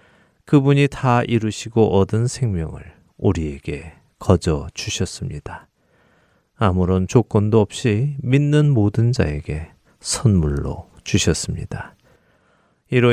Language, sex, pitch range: Korean, male, 95-125 Hz